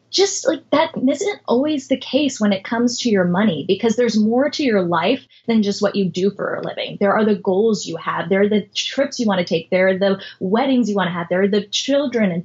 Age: 10-29